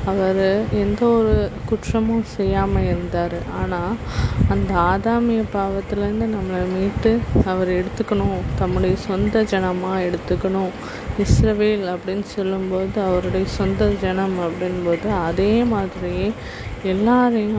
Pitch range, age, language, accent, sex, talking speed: 180-210 Hz, 20-39, Tamil, native, female, 95 wpm